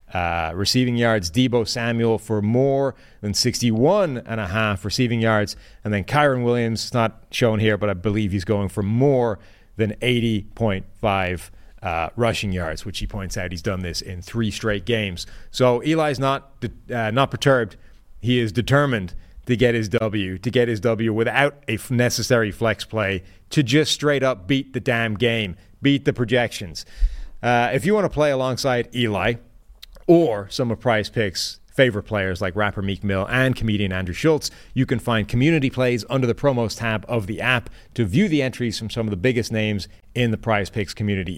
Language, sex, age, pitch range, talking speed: English, male, 30-49, 100-125 Hz, 180 wpm